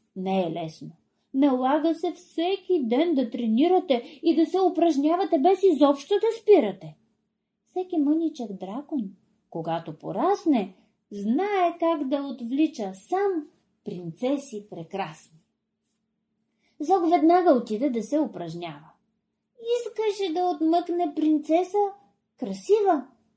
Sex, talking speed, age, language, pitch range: female, 105 wpm, 30-49, Bulgarian, 215-325 Hz